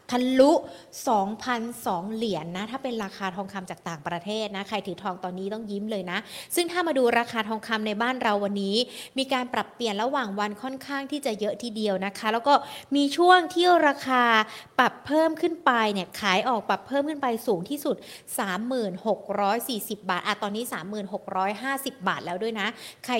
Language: Thai